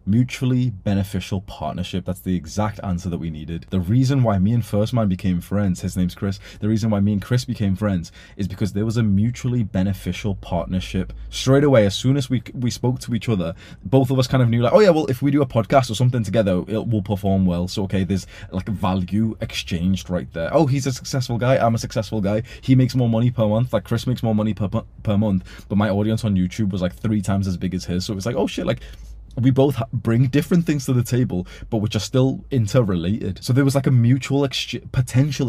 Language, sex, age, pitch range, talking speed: English, male, 20-39, 95-125 Hz, 240 wpm